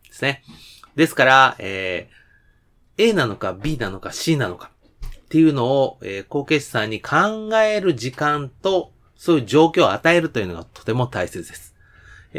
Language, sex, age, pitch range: Japanese, male, 30-49, 110-165 Hz